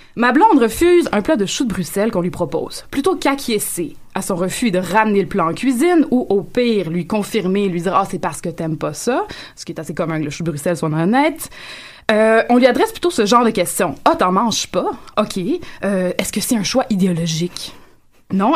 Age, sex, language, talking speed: 20-39, female, French, 230 wpm